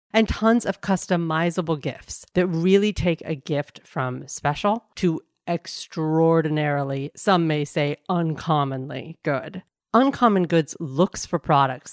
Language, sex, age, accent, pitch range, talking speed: English, female, 40-59, American, 150-185 Hz, 120 wpm